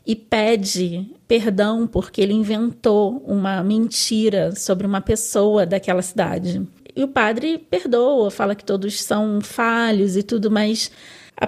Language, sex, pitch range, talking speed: Portuguese, female, 200-240 Hz, 135 wpm